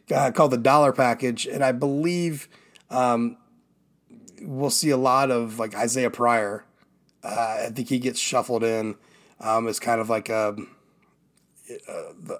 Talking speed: 150 wpm